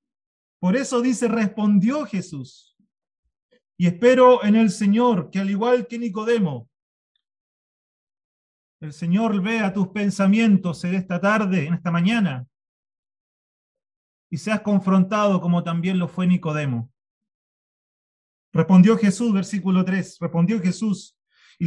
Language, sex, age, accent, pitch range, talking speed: Spanish, male, 40-59, Argentinian, 175-235 Hz, 115 wpm